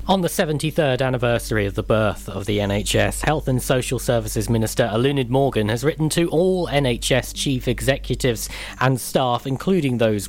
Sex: male